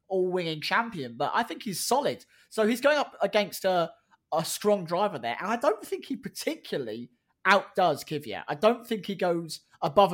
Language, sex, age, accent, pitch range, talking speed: English, male, 20-39, British, 150-215 Hz, 185 wpm